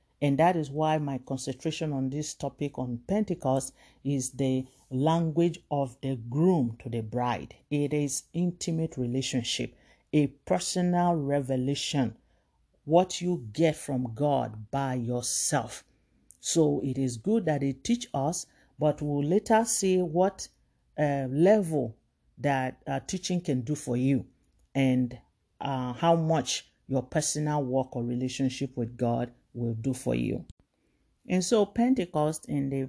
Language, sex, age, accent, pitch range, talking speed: English, male, 50-69, Nigerian, 130-155 Hz, 140 wpm